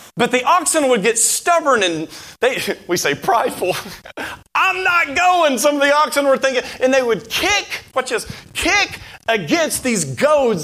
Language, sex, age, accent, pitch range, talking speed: English, male, 40-59, American, 230-320 Hz, 170 wpm